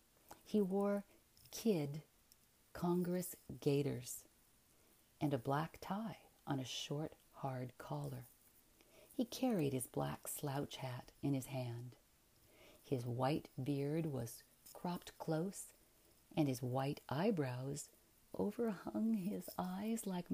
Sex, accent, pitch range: female, American, 125-175 Hz